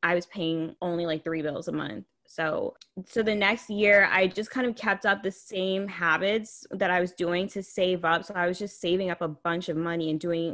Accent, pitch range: American, 165-200 Hz